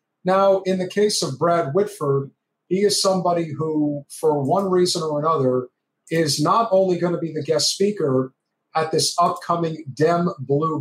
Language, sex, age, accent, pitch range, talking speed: English, male, 50-69, American, 145-195 Hz, 165 wpm